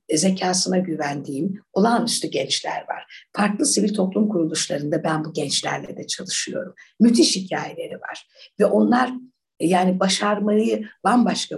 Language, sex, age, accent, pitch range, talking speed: Turkish, female, 60-79, native, 160-210 Hz, 115 wpm